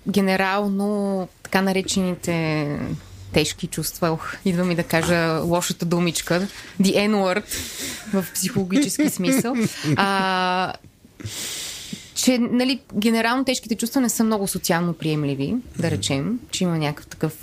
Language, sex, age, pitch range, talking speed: Bulgarian, female, 20-39, 175-225 Hz, 115 wpm